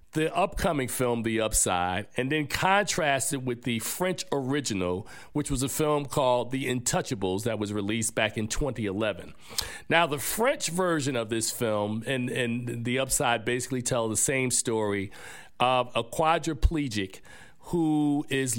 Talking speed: 150 wpm